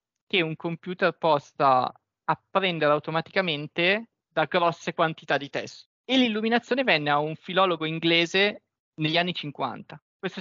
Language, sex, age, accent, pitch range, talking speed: Italian, male, 20-39, native, 150-190 Hz, 125 wpm